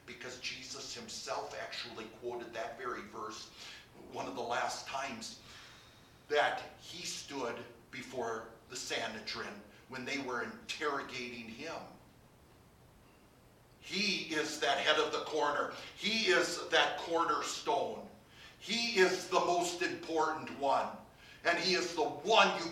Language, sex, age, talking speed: English, male, 50-69, 125 wpm